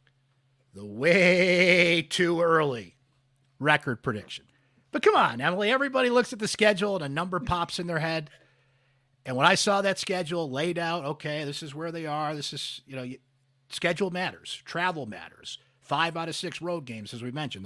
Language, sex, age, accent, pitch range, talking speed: English, male, 50-69, American, 130-165 Hz, 180 wpm